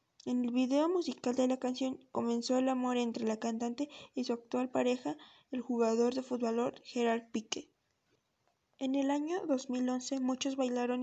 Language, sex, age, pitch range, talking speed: Spanish, female, 20-39, 240-275 Hz, 160 wpm